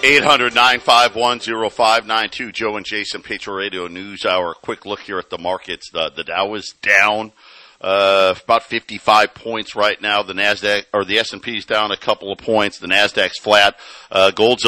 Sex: male